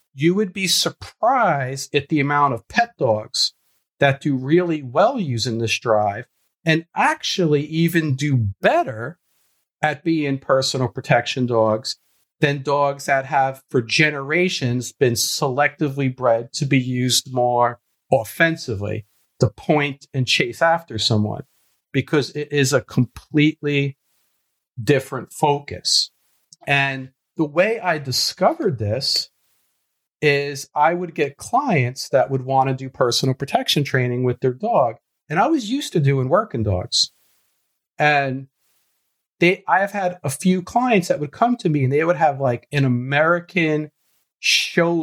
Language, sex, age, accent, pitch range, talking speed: English, male, 50-69, American, 125-160 Hz, 140 wpm